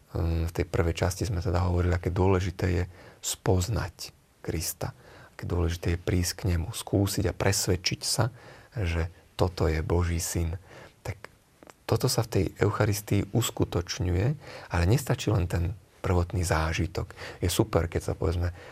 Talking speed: 145 wpm